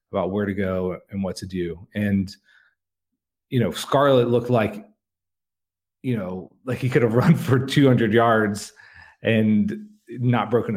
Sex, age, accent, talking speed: male, 30-49, American, 150 wpm